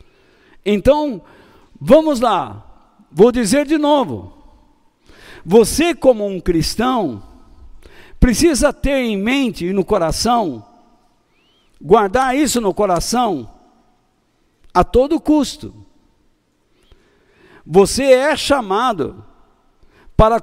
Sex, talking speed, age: male, 85 wpm, 60-79